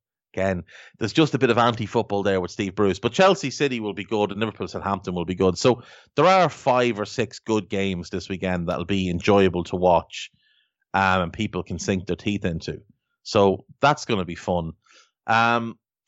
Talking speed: 205 wpm